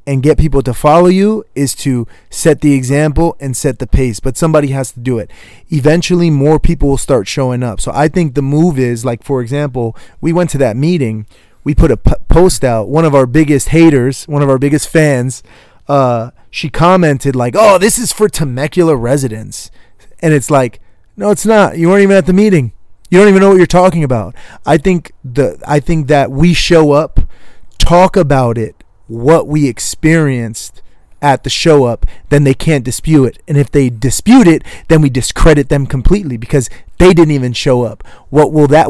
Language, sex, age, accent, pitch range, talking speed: English, male, 30-49, American, 130-175 Hz, 195 wpm